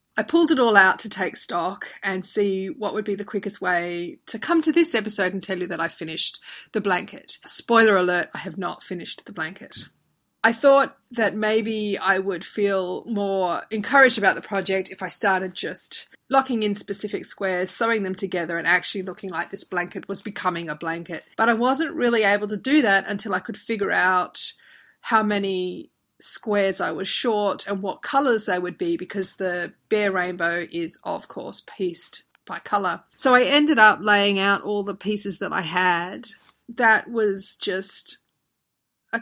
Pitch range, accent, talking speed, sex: 180-215 Hz, Australian, 185 wpm, female